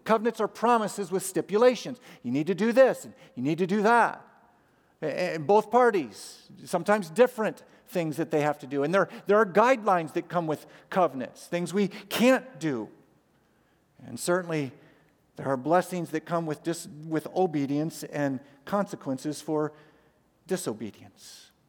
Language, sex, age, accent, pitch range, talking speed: English, male, 50-69, American, 155-210 Hz, 150 wpm